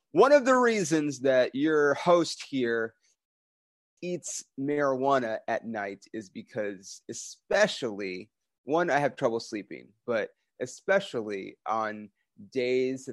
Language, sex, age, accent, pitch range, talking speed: English, male, 30-49, American, 110-165 Hz, 110 wpm